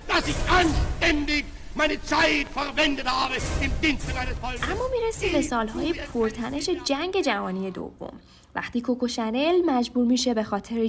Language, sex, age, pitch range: Persian, female, 10-29, 210-300 Hz